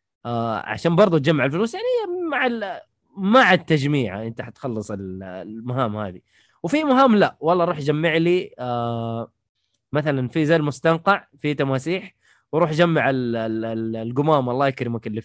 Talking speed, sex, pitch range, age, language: 145 wpm, male, 125-170 Hz, 20-39, Arabic